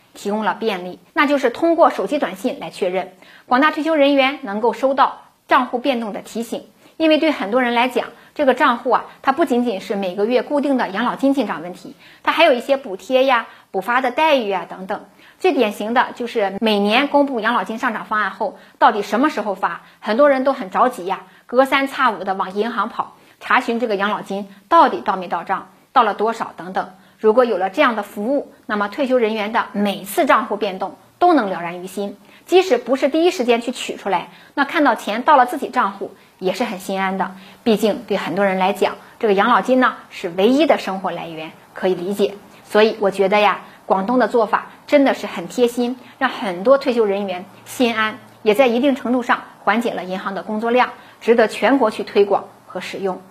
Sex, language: female, Chinese